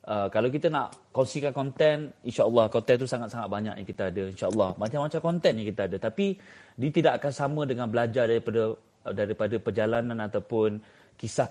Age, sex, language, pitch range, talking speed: 30-49, male, Malay, 110-160 Hz, 165 wpm